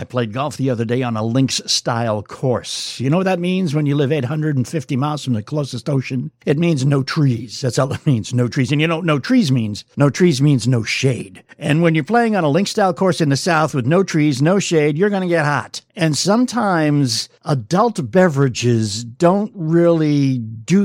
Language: English